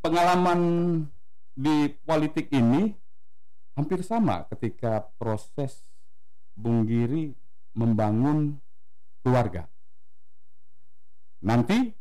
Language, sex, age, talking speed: Indonesian, male, 50-69, 65 wpm